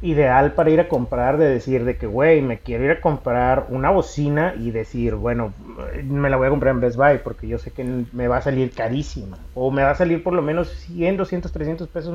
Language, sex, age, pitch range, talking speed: Spanish, male, 30-49, 115-150 Hz, 240 wpm